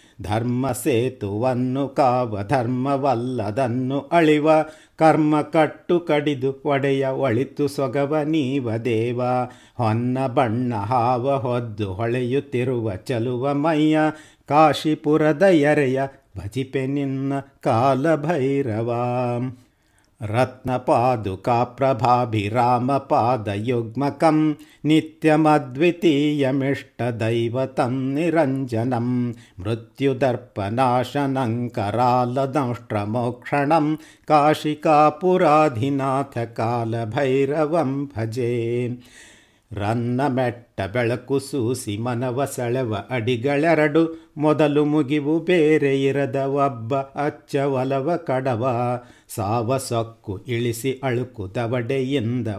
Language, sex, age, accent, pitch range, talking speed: Kannada, male, 50-69, native, 120-145 Hz, 60 wpm